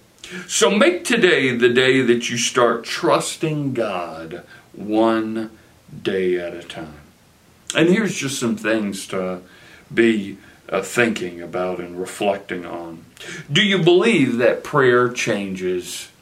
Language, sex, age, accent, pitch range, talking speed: English, male, 60-79, American, 100-125 Hz, 125 wpm